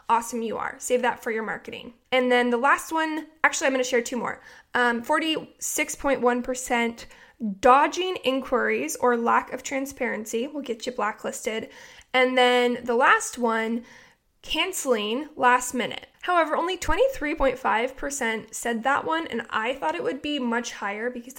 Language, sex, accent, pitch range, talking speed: English, female, American, 235-290 Hz, 155 wpm